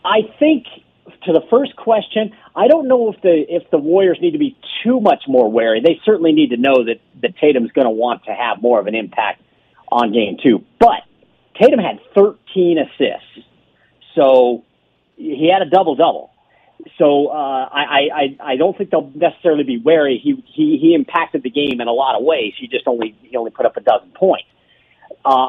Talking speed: 200 wpm